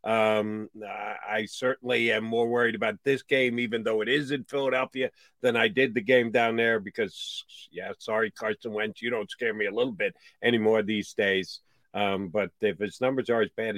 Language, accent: English, American